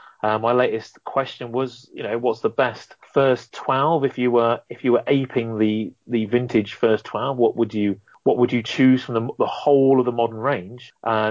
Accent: British